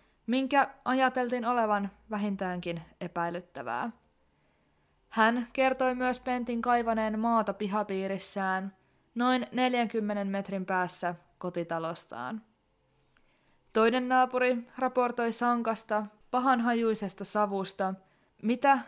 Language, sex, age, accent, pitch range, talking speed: Finnish, female, 20-39, native, 190-240 Hz, 75 wpm